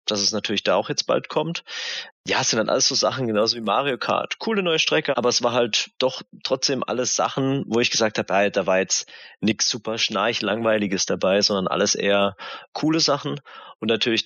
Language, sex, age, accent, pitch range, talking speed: German, male, 30-49, German, 100-135 Hz, 205 wpm